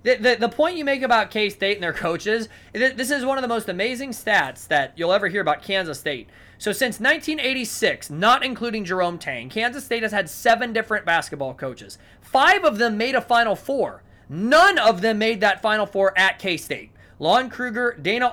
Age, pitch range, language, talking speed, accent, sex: 20-39, 185-255 Hz, English, 195 wpm, American, male